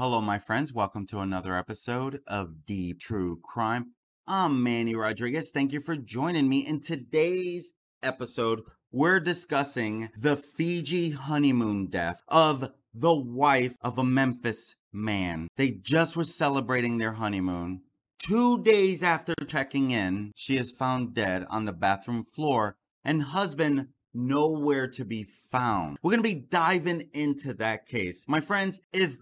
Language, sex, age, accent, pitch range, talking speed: English, male, 30-49, American, 115-165 Hz, 145 wpm